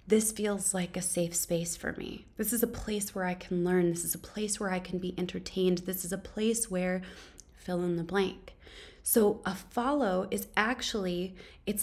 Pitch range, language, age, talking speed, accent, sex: 185-220 Hz, English, 20-39, 205 wpm, American, female